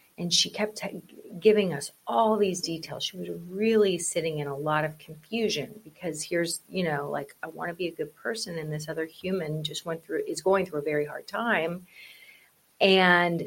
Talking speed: 195 wpm